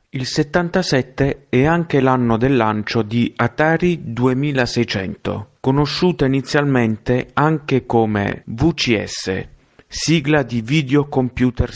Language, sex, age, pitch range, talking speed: Italian, male, 40-59, 115-145 Hz, 95 wpm